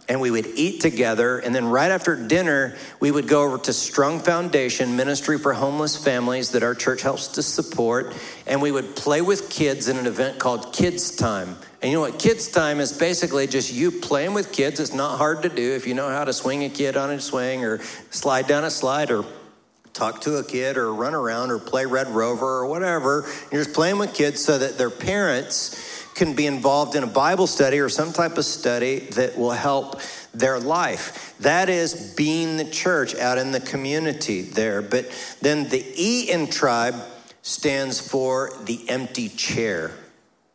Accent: American